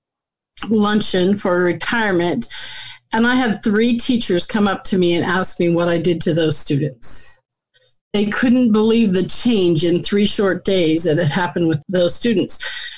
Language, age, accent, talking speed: English, 40-59, American, 165 wpm